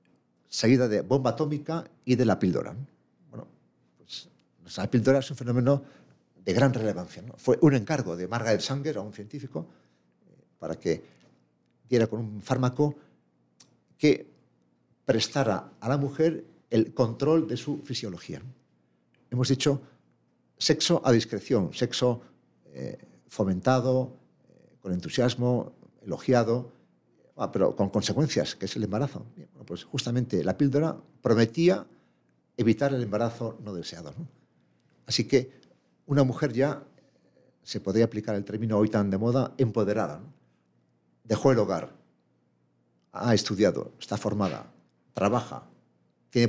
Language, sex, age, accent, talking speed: Spanish, male, 60-79, Spanish, 125 wpm